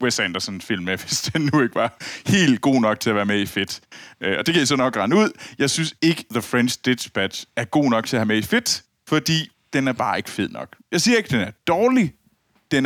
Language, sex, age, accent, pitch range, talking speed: Danish, male, 30-49, native, 110-160 Hz, 250 wpm